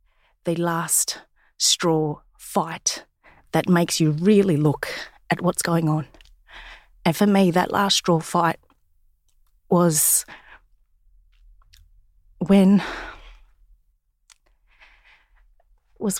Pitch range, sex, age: 170-205 Hz, female, 30-49